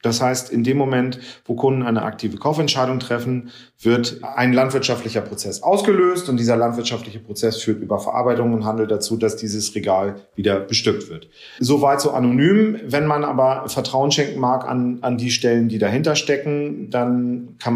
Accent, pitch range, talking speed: German, 115-145 Hz, 170 wpm